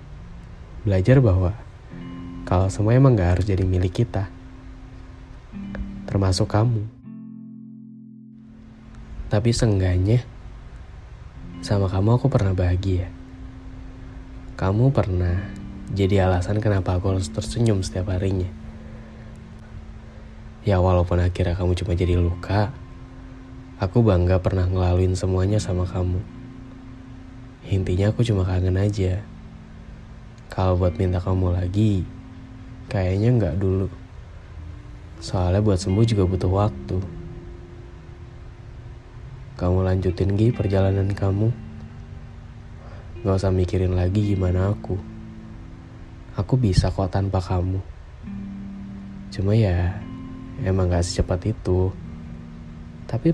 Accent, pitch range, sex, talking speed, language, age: native, 90-115 Hz, male, 95 wpm, Indonesian, 20-39